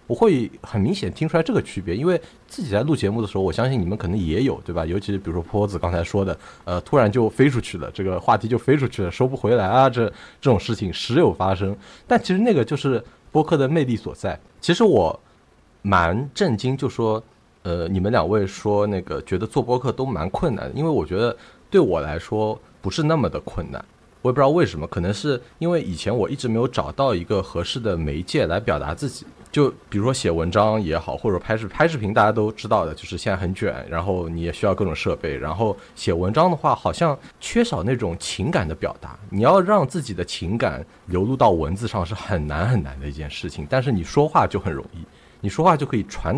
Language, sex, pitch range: Chinese, male, 90-125 Hz